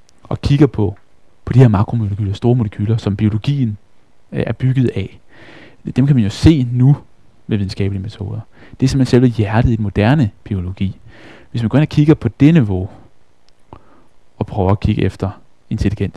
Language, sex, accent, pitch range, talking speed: Danish, male, native, 100-120 Hz, 170 wpm